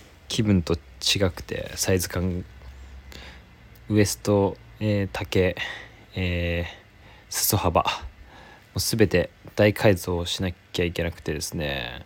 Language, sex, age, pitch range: Japanese, male, 20-39, 85-105 Hz